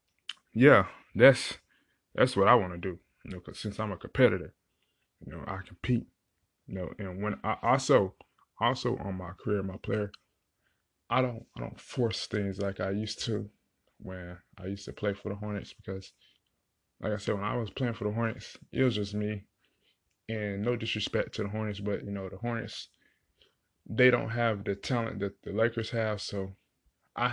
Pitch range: 95-110 Hz